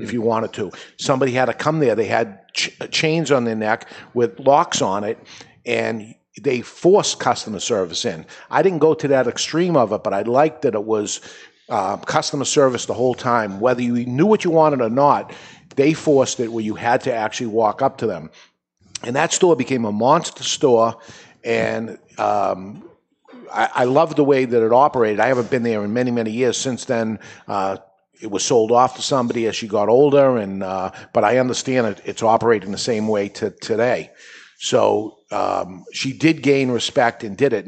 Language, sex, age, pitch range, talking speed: English, male, 50-69, 115-145 Hz, 200 wpm